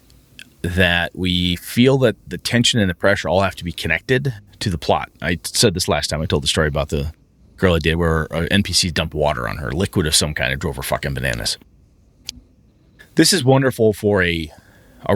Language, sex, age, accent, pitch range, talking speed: English, male, 30-49, American, 85-110 Hz, 210 wpm